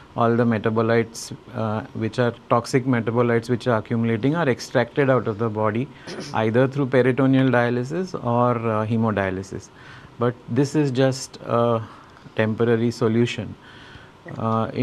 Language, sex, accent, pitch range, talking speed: English, male, Indian, 110-130 Hz, 130 wpm